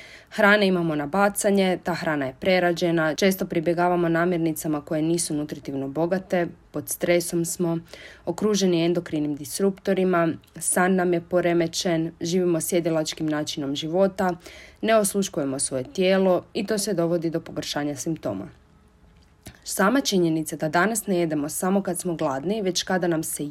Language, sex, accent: Croatian, female, native